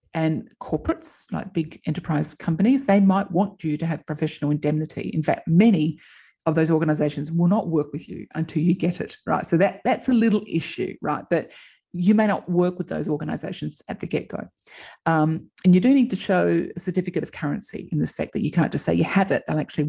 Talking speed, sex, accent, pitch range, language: 215 wpm, female, Australian, 155-195 Hz, English